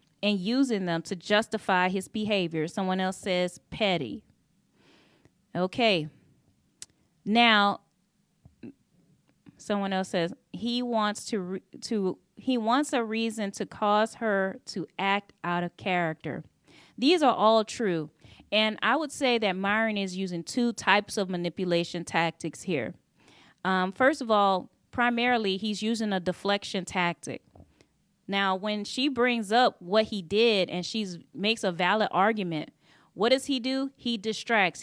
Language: English